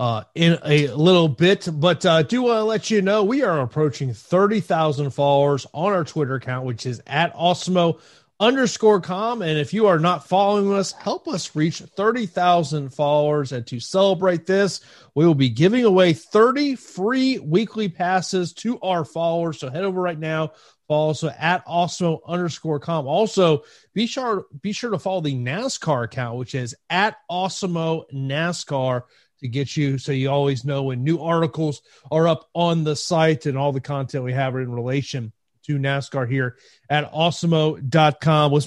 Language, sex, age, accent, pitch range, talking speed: English, male, 30-49, American, 140-180 Hz, 170 wpm